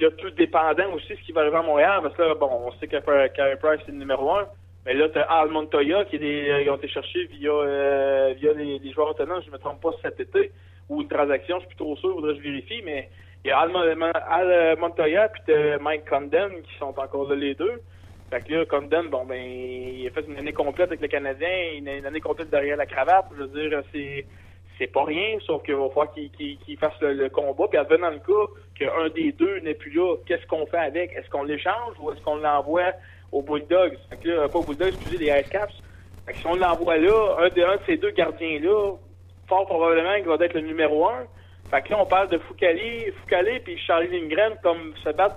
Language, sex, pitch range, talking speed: French, male, 140-180 Hz, 250 wpm